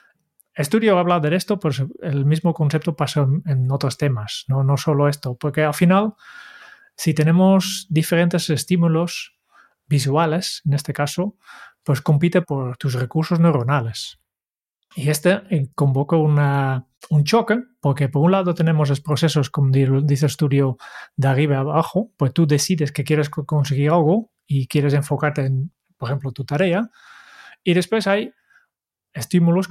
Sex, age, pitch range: male, 20-39, 140-175 Hz